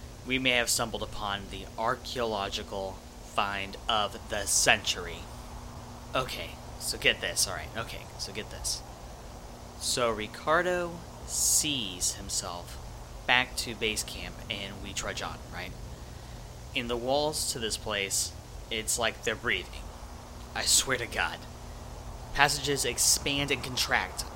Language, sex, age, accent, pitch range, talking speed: English, male, 20-39, American, 100-140 Hz, 125 wpm